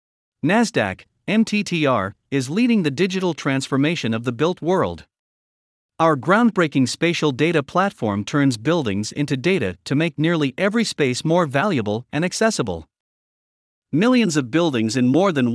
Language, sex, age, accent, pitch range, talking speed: English, male, 50-69, American, 125-180 Hz, 135 wpm